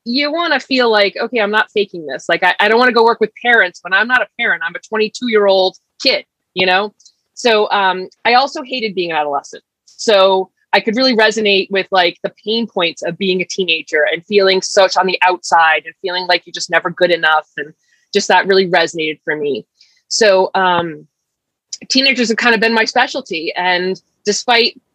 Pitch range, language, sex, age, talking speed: 185-225 Hz, English, female, 30-49, 210 wpm